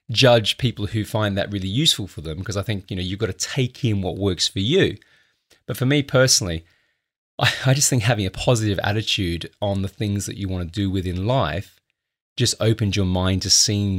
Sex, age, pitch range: male, 30-49, 100-125 Hz